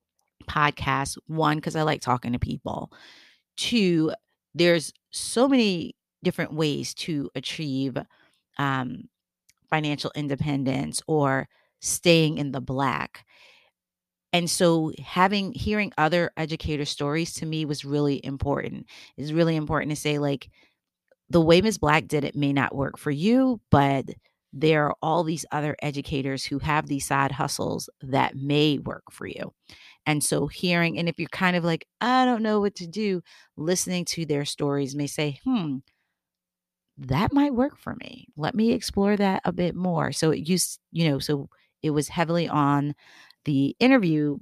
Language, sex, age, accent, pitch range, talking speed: English, female, 30-49, American, 140-170 Hz, 155 wpm